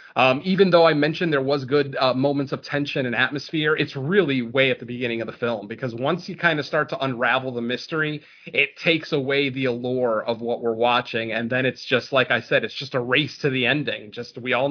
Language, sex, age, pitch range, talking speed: English, male, 30-49, 125-155 Hz, 240 wpm